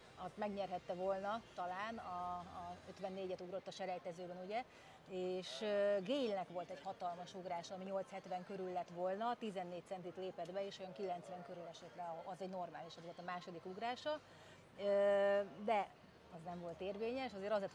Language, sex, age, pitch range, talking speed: Hungarian, female, 30-49, 175-200 Hz, 160 wpm